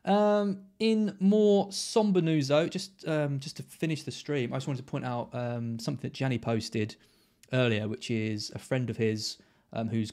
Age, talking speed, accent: 20-39, 195 wpm, British